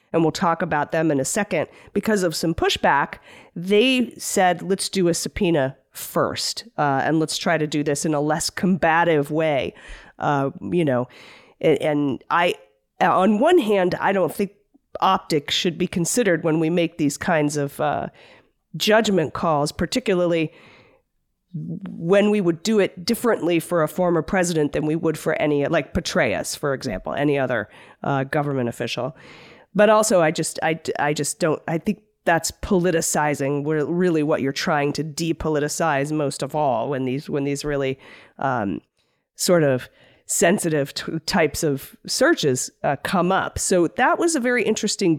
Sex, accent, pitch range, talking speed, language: female, American, 150-190 Hz, 165 wpm, English